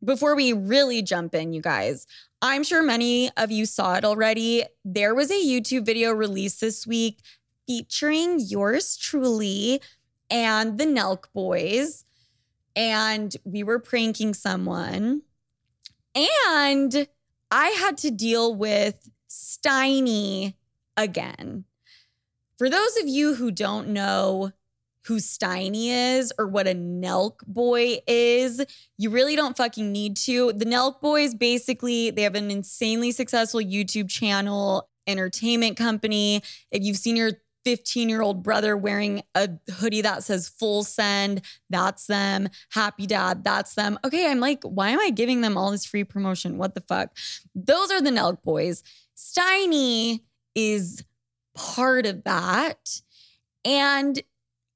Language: English